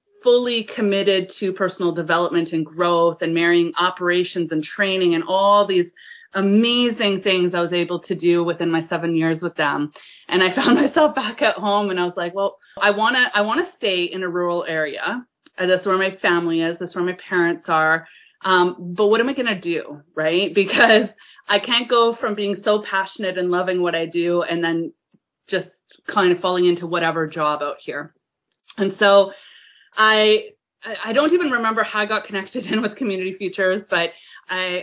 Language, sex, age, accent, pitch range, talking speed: English, female, 30-49, American, 175-210 Hz, 195 wpm